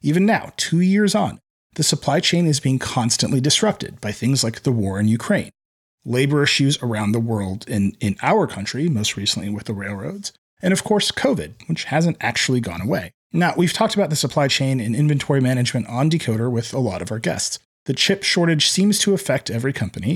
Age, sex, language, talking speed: 30-49, male, English, 200 wpm